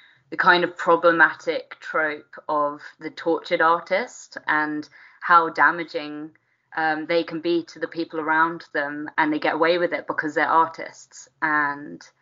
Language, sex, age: English, female, 20-39